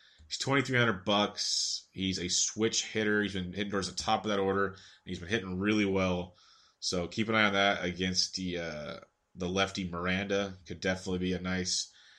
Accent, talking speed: American, 190 wpm